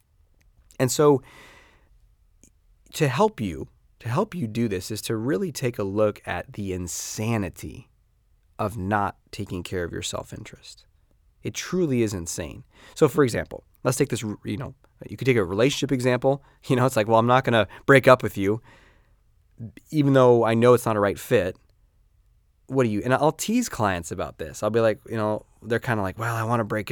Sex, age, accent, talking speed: male, 20-39, American, 200 wpm